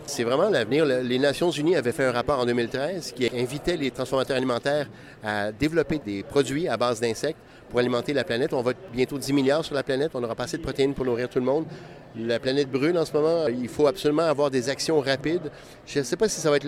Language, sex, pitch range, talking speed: French, male, 125-150 Hz, 245 wpm